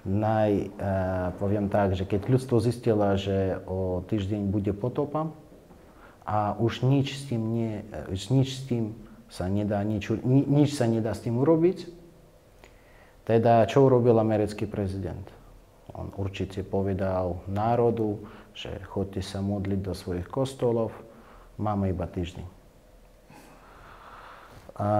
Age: 30-49